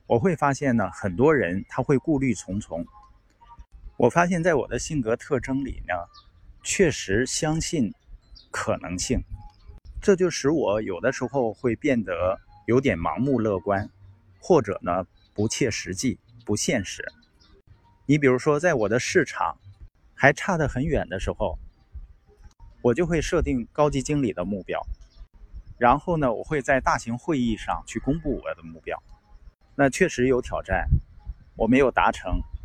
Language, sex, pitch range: Chinese, male, 90-135 Hz